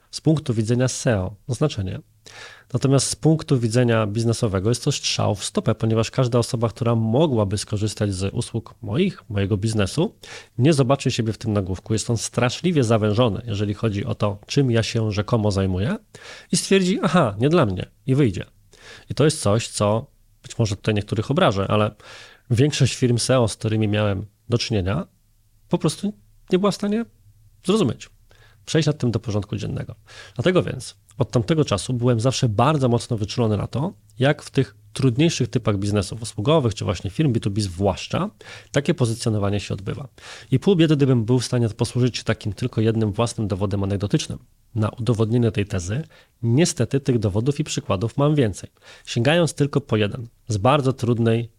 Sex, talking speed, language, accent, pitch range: male, 170 wpm, Polish, native, 105-135 Hz